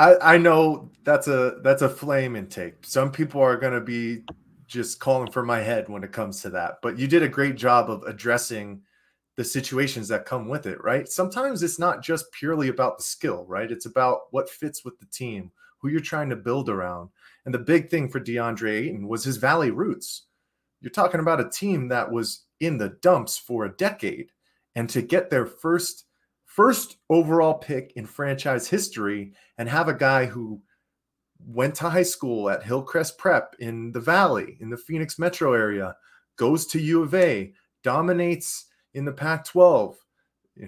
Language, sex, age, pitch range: English, male, 30-49, 115-160 Hz